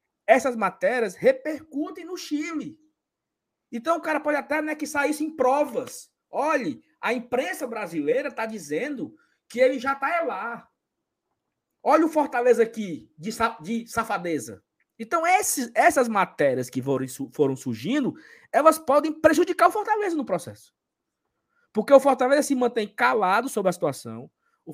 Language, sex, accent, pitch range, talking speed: Portuguese, male, Brazilian, 180-290 Hz, 135 wpm